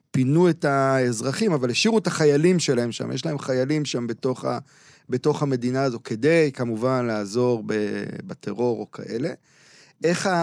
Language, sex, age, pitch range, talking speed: Hebrew, male, 40-59, 130-170 Hz, 145 wpm